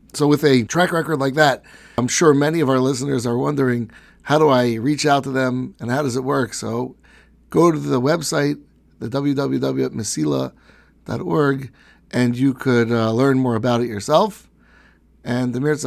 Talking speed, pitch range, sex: 175 wpm, 120-145 Hz, male